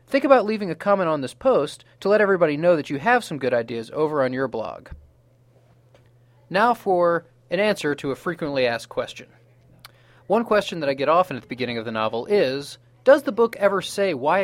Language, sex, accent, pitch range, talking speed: English, male, American, 125-200 Hz, 210 wpm